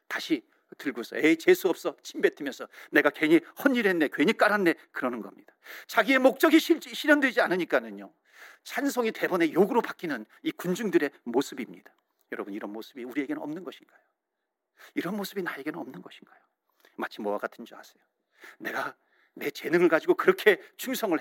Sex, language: male, Korean